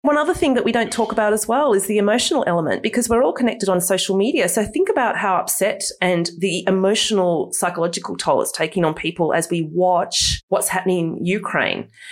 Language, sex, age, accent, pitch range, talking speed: English, female, 30-49, Australian, 170-230 Hz, 210 wpm